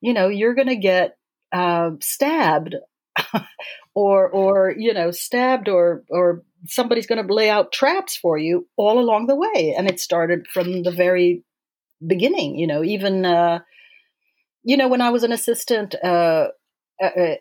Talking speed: 160 wpm